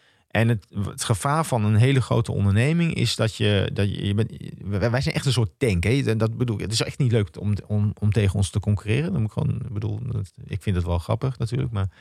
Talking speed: 230 wpm